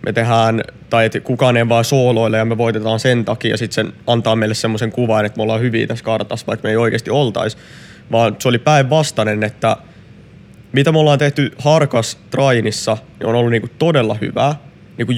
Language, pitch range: Finnish, 110-130 Hz